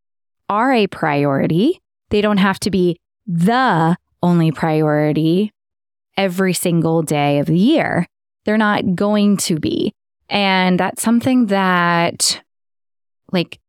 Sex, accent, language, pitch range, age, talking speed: female, American, English, 165-220 Hz, 20-39, 120 wpm